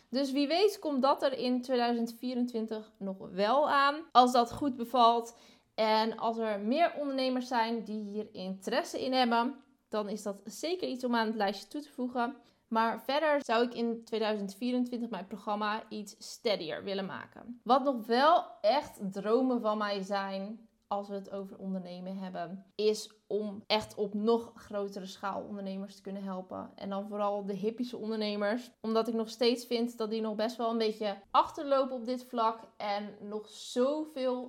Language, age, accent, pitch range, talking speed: Dutch, 20-39, Dutch, 210-245 Hz, 175 wpm